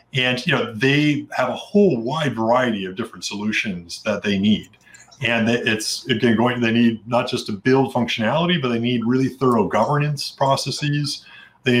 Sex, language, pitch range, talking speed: male, English, 110-130 Hz, 175 wpm